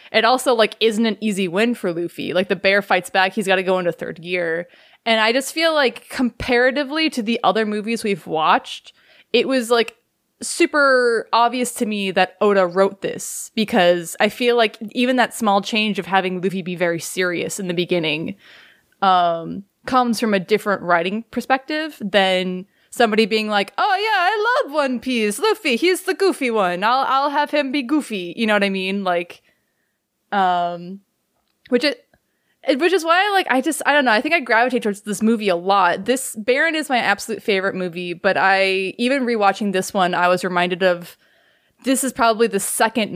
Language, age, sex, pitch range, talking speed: English, 20-39, female, 185-245 Hz, 195 wpm